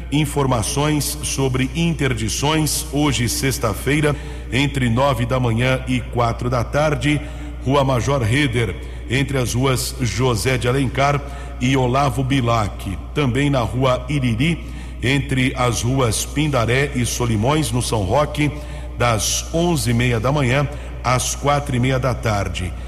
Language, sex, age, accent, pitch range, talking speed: Portuguese, male, 60-79, Brazilian, 120-140 Hz, 130 wpm